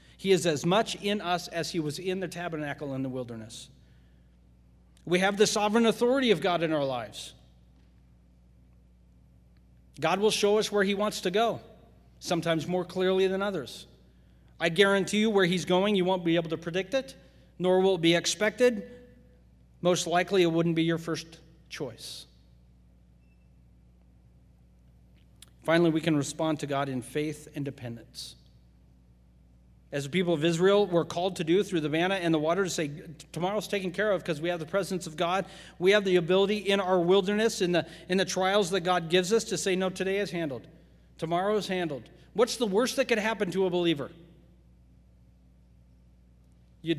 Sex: male